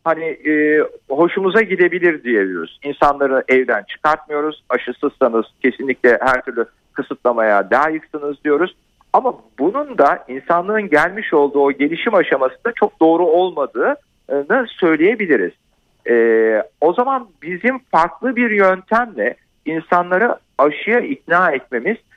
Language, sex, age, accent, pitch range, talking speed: Turkish, male, 50-69, native, 135-205 Hz, 110 wpm